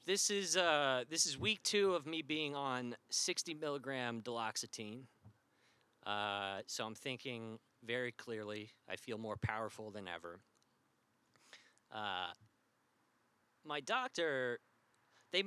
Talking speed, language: 115 wpm, English